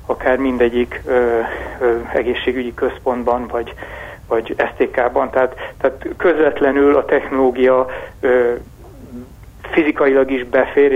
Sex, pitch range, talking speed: male, 125-135 Hz, 80 wpm